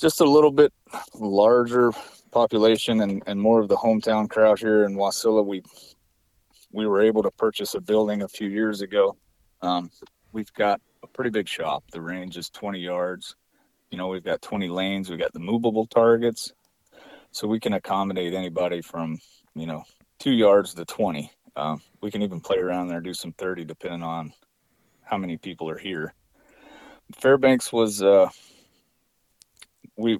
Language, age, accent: English, 30-49, American